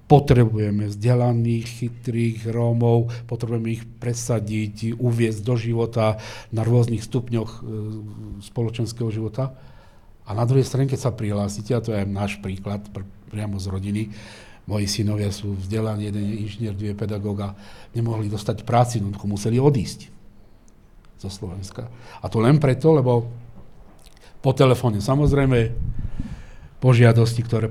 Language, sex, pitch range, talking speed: Slovak, male, 105-120 Hz, 120 wpm